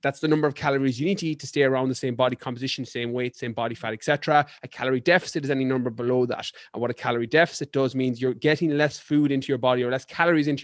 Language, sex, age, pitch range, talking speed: English, male, 30-49, 130-155 Hz, 275 wpm